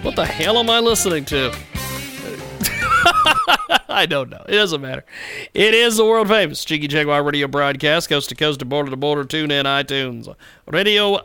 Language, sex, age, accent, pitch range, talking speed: English, male, 40-59, American, 135-185 Hz, 140 wpm